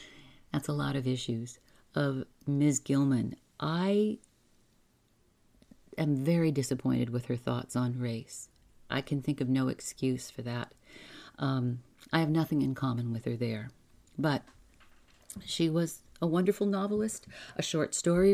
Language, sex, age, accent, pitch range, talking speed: English, female, 40-59, American, 130-195 Hz, 140 wpm